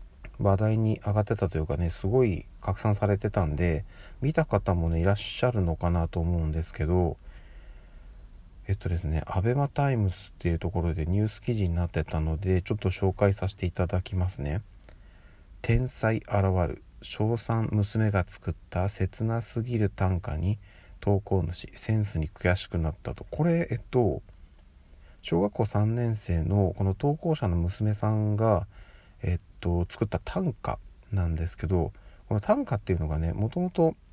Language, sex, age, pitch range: Japanese, male, 40-59, 85-110 Hz